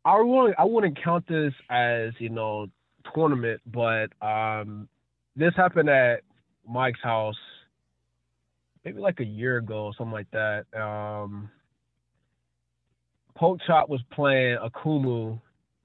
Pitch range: 110-150 Hz